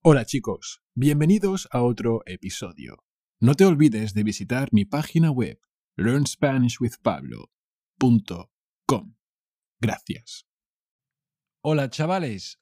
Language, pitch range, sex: English, 100-155 Hz, male